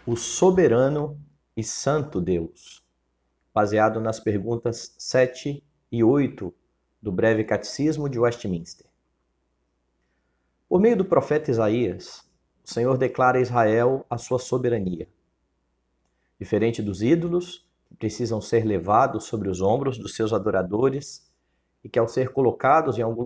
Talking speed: 125 wpm